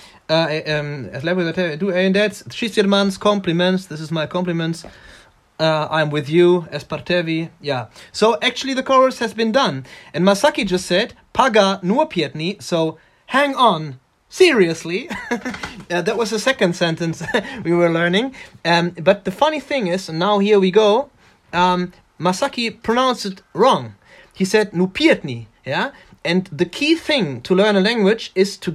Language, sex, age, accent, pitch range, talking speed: English, male, 30-49, German, 170-230 Hz, 145 wpm